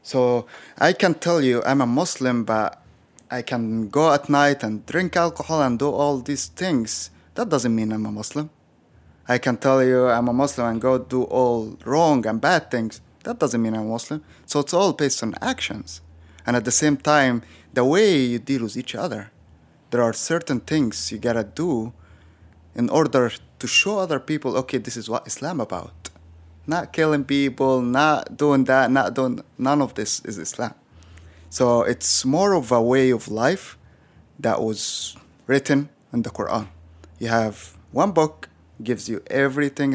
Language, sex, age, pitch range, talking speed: English, male, 20-39, 110-140 Hz, 185 wpm